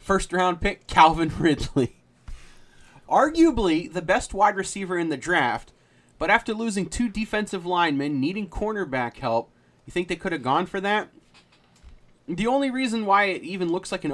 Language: English